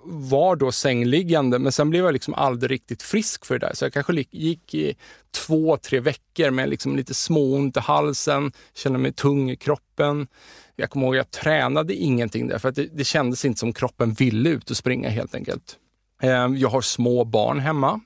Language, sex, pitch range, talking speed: Swedish, male, 130-160 Hz, 205 wpm